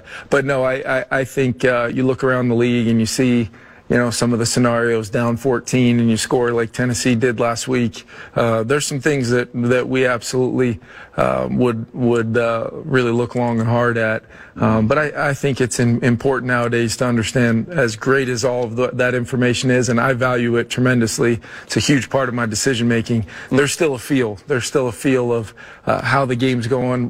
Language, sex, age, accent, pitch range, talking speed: English, male, 40-59, American, 120-130 Hz, 215 wpm